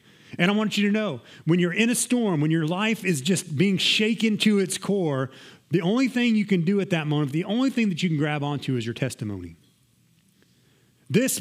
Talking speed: 220 wpm